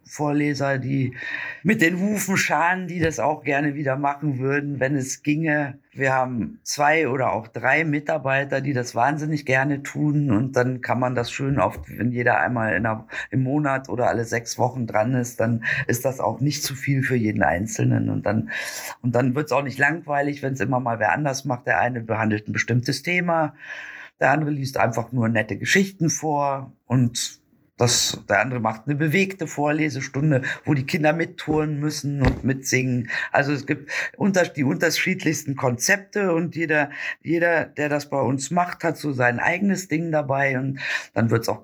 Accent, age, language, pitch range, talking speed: German, 50-69, German, 125-150 Hz, 180 wpm